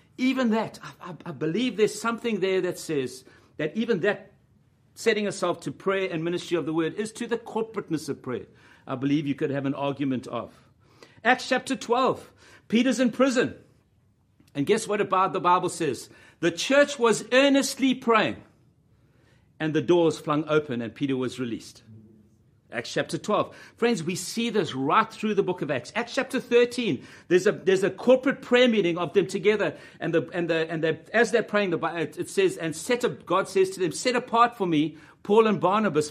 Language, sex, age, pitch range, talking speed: English, male, 60-79, 150-225 Hz, 190 wpm